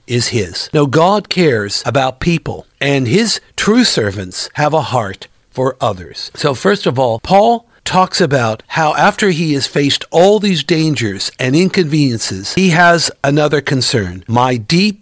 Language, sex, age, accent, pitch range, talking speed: English, male, 60-79, American, 125-175 Hz, 155 wpm